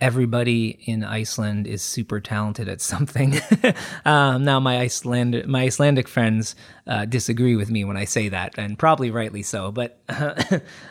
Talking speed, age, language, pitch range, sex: 160 wpm, 20-39, English, 105-135 Hz, male